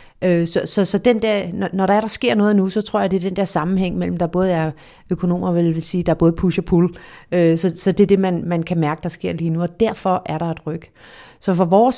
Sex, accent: female, native